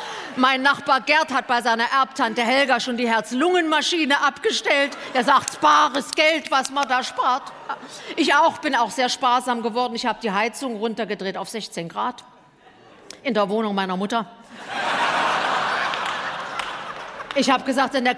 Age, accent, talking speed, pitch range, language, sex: 50-69, German, 150 wpm, 245-315 Hz, German, female